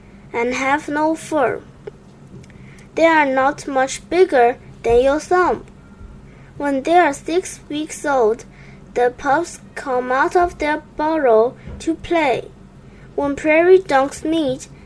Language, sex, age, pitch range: Chinese, female, 20-39, 265-350 Hz